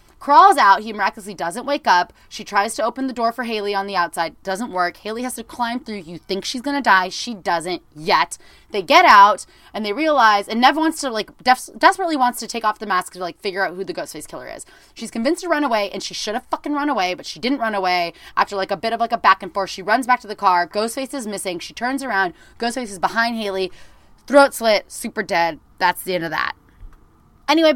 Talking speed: 245 wpm